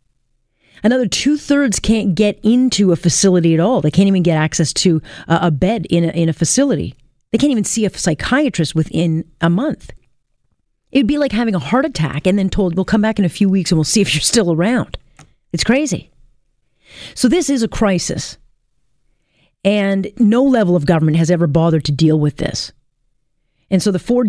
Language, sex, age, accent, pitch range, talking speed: English, female, 40-59, American, 155-195 Hz, 190 wpm